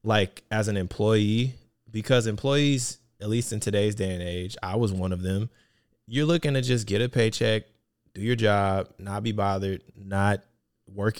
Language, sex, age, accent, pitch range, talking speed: English, male, 20-39, American, 105-120 Hz, 175 wpm